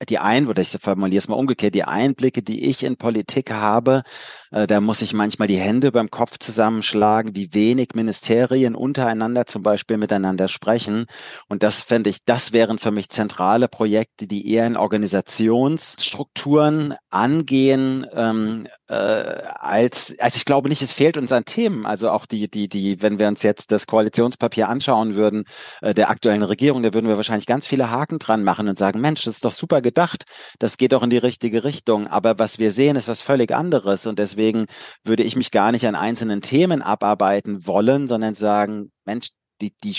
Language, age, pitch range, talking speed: German, 40-59, 105-120 Hz, 190 wpm